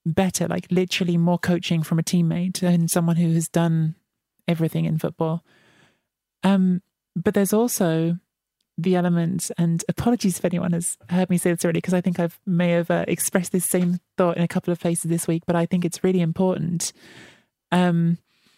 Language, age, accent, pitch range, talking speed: English, 30-49, British, 165-185 Hz, 185 wpm